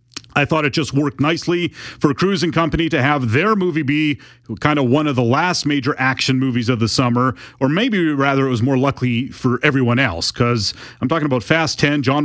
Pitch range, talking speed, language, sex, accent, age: 115-145 Hz, 215 wpm, English, male, American, 30-49